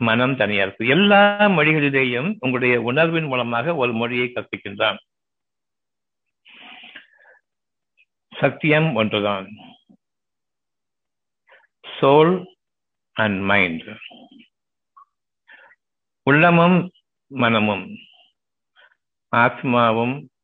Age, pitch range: 50-69, 115-155 Hz